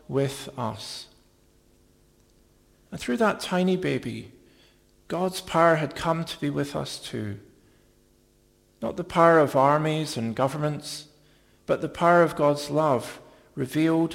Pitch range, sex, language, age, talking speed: 125-160 Hz, male, English, 50-69, 125 wpm